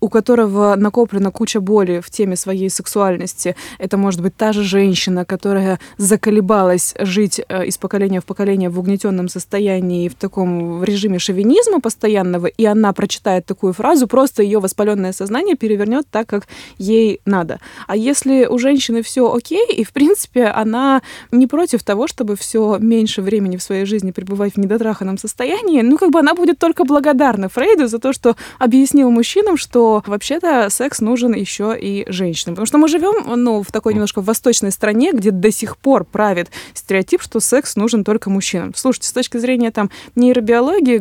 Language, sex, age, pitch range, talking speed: Russian, female, 20-39, 200-245 Hz, 170 wpm